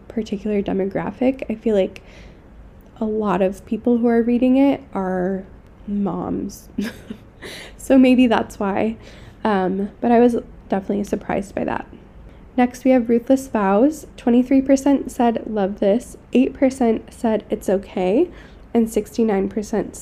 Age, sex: 10-29, female